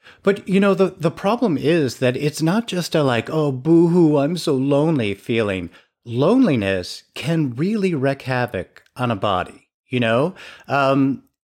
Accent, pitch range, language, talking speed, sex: American, 115-165 Hz, English, 155 wpm, male